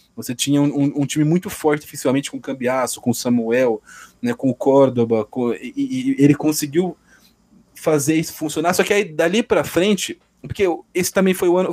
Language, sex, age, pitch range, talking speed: Portuguese, male, 20-39, 145-190 Hz, 205 wpm